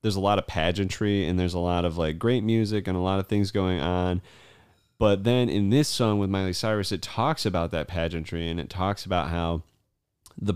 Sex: male